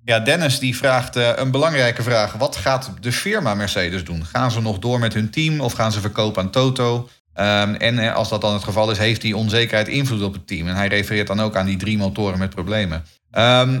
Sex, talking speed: male, 230 wpm